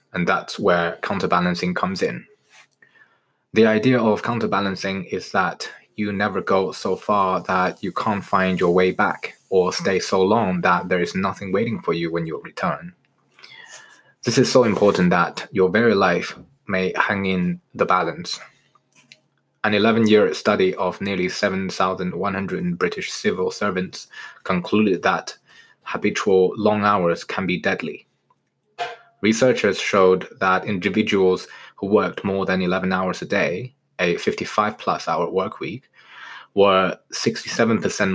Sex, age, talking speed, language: male, 20-39, 140 wpm, English